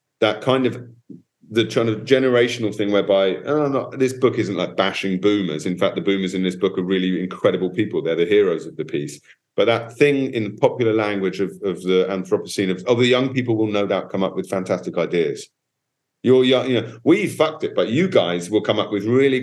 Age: 40-59